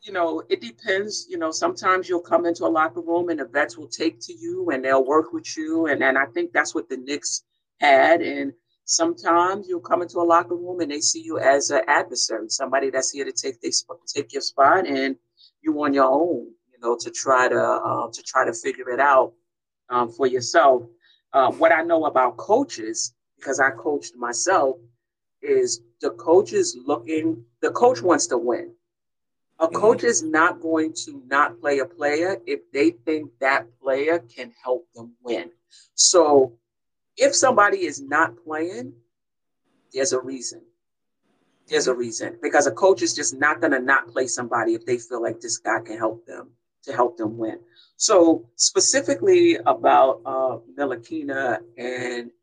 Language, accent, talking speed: English, American, 180 wpm